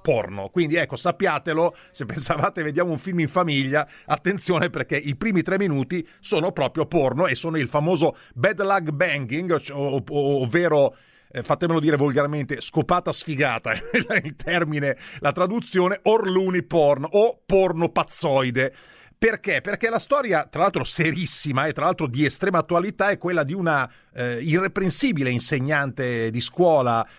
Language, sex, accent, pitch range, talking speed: Italian, male, native, 135-180 Hz, 150 wpm